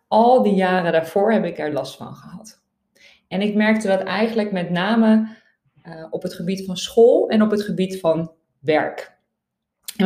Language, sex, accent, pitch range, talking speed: Dutch, female, Dutch, 165-210 Hz, 180 wpm